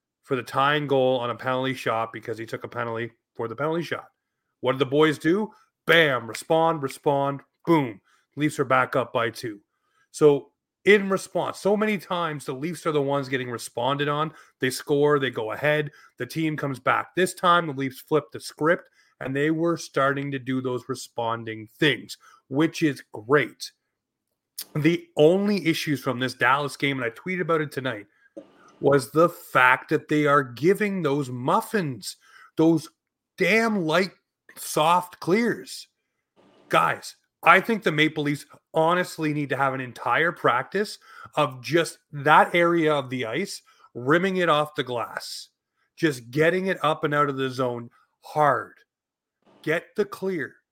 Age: 30-49